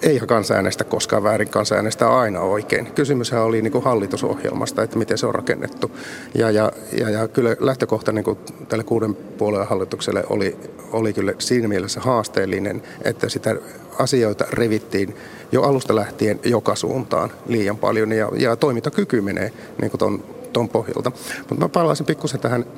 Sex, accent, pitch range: male, native, 110-140 Hz